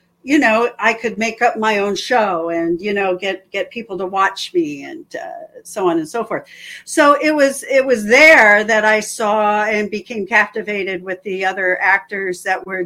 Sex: female